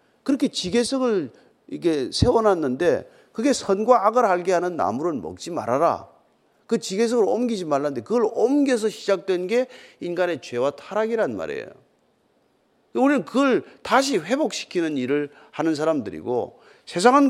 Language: Korean